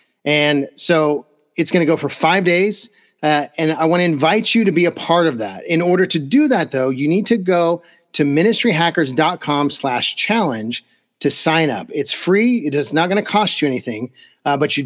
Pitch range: 150-185 Hz